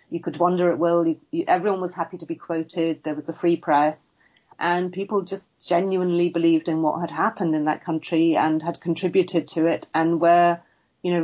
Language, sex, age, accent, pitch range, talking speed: English, female, 40-59, British, 155-175 Hz, 200 wpm